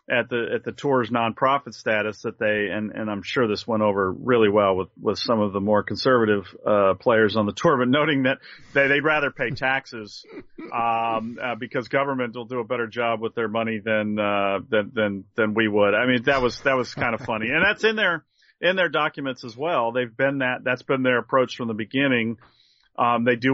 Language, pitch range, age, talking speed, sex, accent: English, 115-140 Hz, 40-59, 225 wpm, male, American